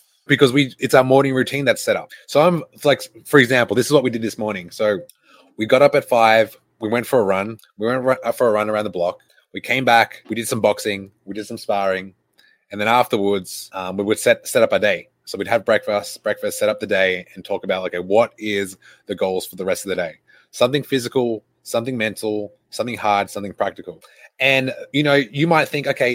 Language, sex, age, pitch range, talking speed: English, male, 20-39, 100-135 Hz, 230 wpm